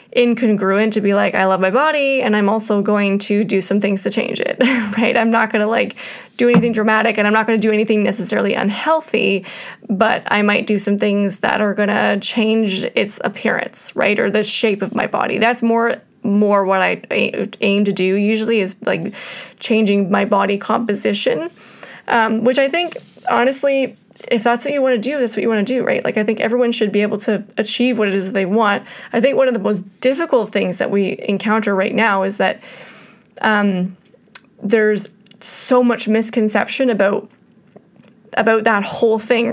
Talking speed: 195 wpm